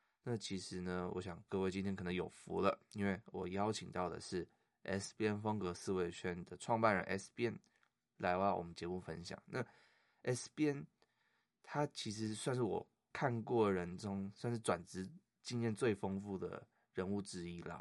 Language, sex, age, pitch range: Chinese, male, 20-39, 90-110 Hz